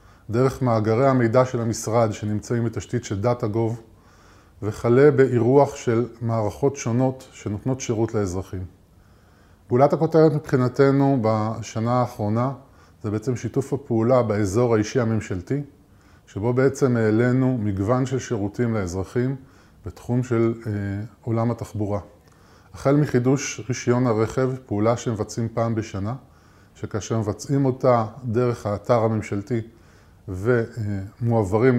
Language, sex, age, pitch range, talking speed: Hebrew, male, 20-39, 105-125 Hz, 105 wpm